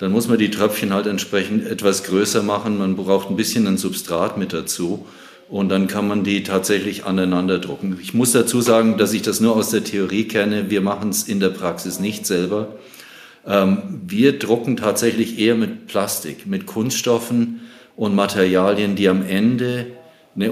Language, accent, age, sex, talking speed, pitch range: German, German, 50-69, male, 175 wpm, 95-115 Hz